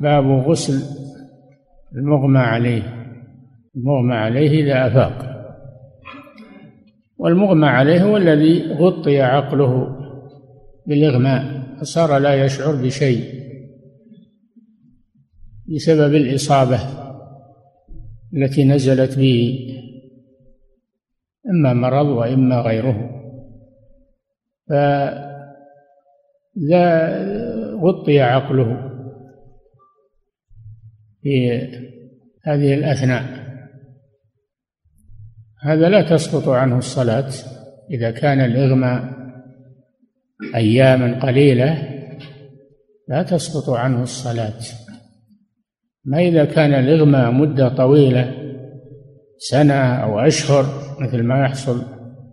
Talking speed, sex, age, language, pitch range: 70 wpm, male, 60-79, Arabic, 130-145 Hz